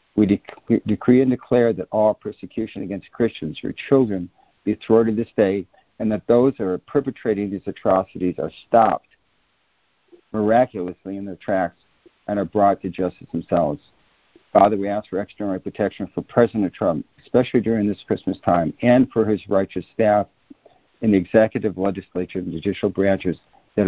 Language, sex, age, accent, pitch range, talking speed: English, male, 60-79, American, 95-115 Hz, 155 wpm